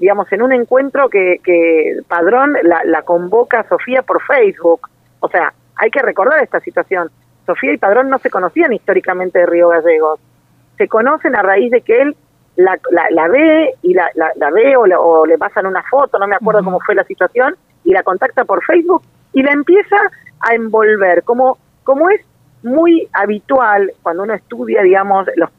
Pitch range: 190-270 Hz